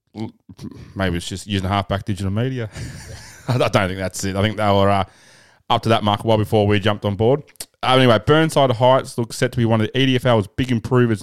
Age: 20-39